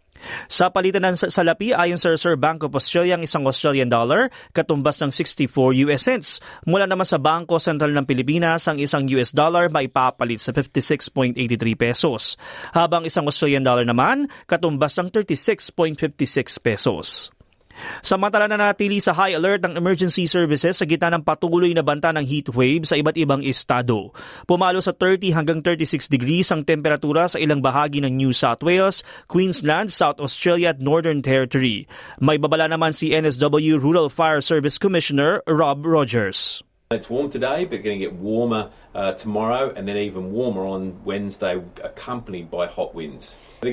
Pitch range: 125-170 Hz